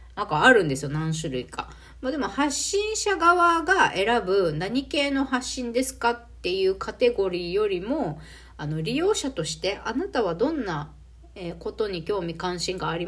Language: Japanese